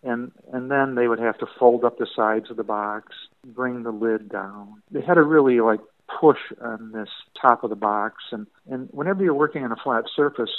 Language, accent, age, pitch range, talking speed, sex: English, American, 50-69, 110-135 Hz, 220 wpm, male